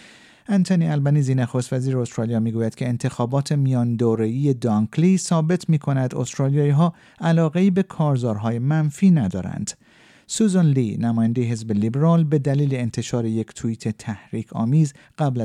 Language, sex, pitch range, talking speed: Persian, male, 115-155 Hz, 125 wpm